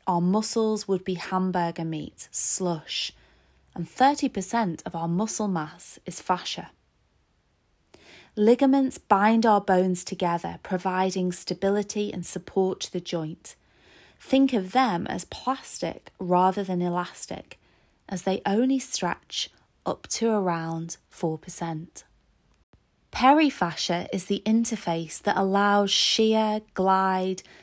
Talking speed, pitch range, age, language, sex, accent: 110 wpm, 175-215 Hz, 20-39, English, female, British